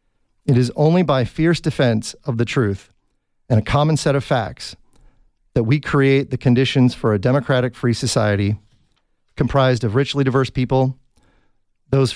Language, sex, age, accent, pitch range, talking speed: English, male, 40-59, American, 115-140 Hz, 155 wpm